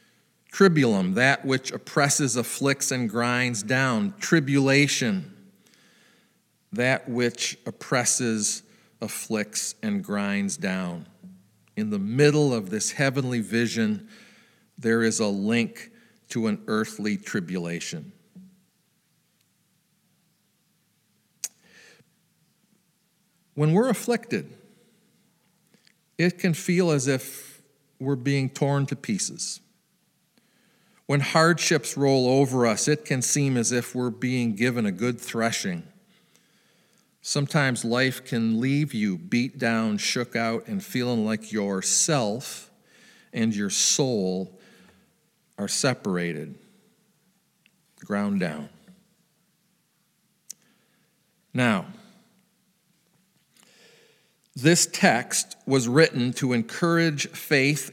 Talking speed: 90 wpm